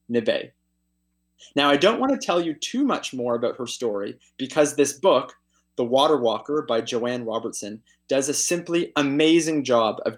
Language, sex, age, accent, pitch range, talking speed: English, male, 20-39, American, 120-155 Hz, 165 wpm